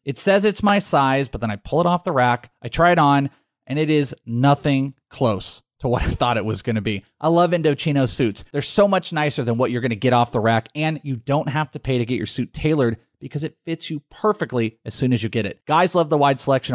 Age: 30-49